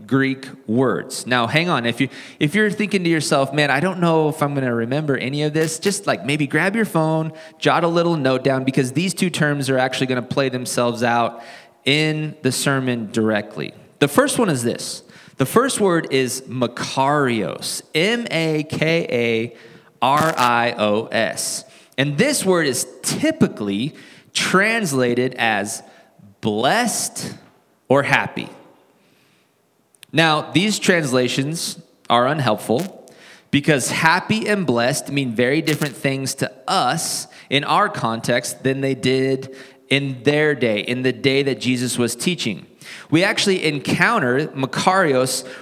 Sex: male